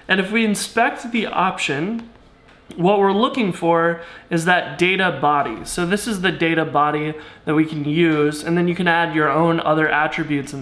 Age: 20-39